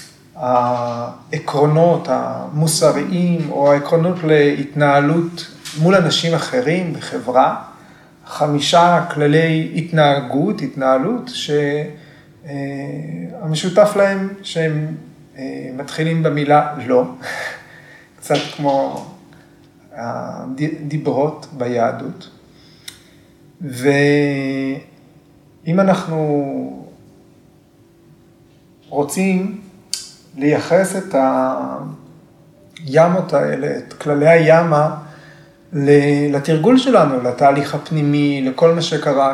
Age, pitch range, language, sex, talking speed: 30-49, 140-165 Hz, Hebrew, male, 60 wpm